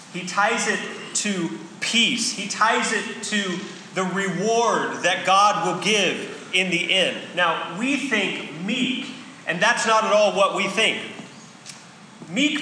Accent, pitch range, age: American, 185-245 Hz, 30-49